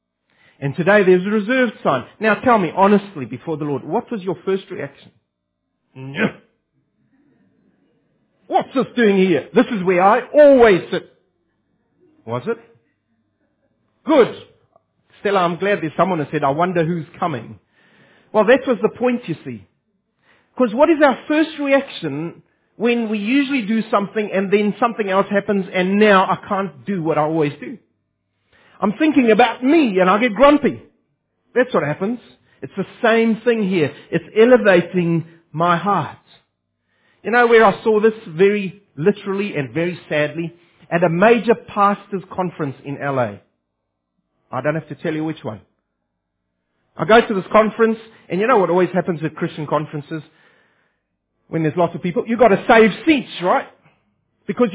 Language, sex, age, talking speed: English, male, 40-59, 160 wpm